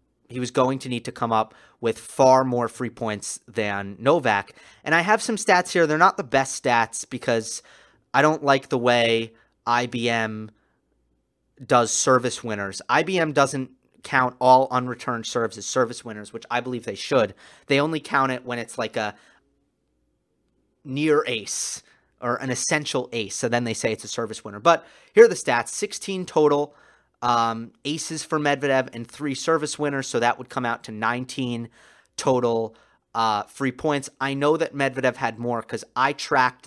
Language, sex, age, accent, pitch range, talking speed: English, male, 30-49, American, 115-140 Hz, 175 wpm